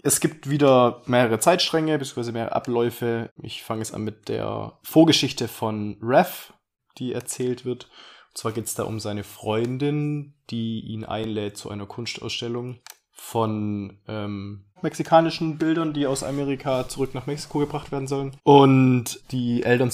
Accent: German